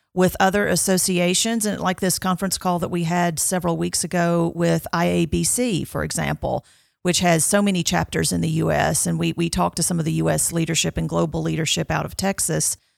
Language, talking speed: English, 195 wpm